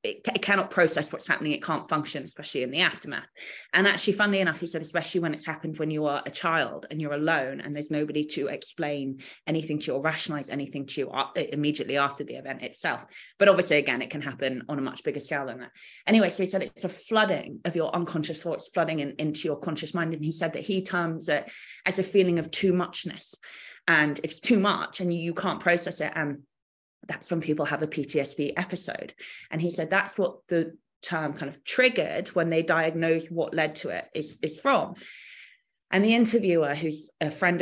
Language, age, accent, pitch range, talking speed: English, 20-39, British, 150-185 Hz, 215 wpm